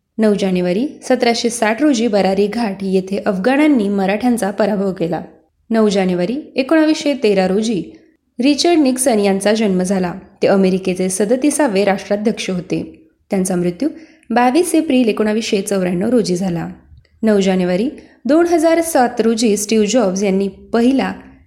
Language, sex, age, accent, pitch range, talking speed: Marathi, female, 20-39, native, 195-250 Hz, 115 wpm